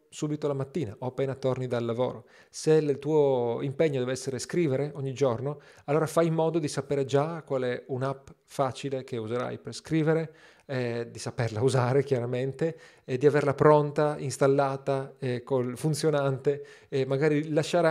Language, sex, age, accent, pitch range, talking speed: Italian, male, 40-59, native, 125-160 Hz, 160 wpm